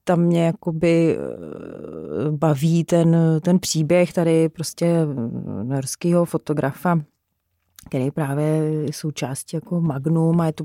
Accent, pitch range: native, 150-170 Hz